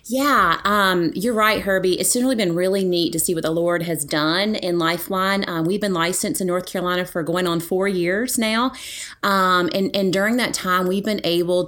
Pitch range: 165-195 Hz